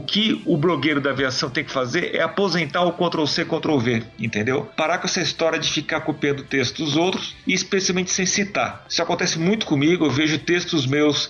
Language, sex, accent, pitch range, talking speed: English, male, Brazilian, 140-180 Hz, 195 wpm